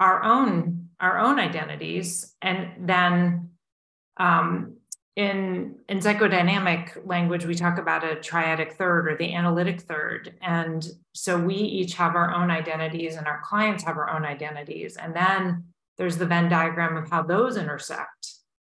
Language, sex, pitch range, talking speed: English, female, 160-185 Hz, 150 wpm